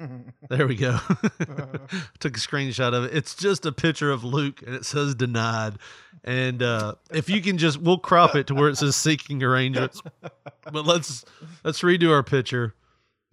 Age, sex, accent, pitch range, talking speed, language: 40-59, male, American, 120-160 Hz, 175 wpm, English